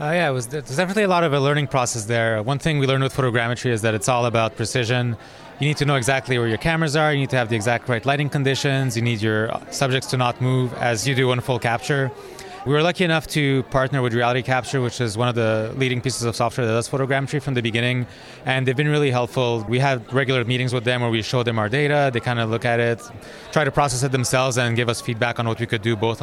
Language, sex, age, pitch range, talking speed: English, male, 20-39, 120-140 Hz, 270 wpm